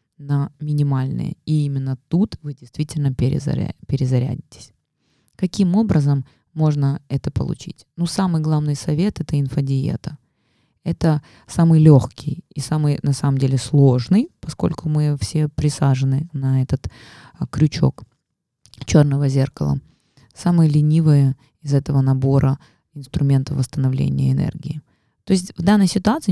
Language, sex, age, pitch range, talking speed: Russian, female, 20-39, 135-160 Hz, 115 wpm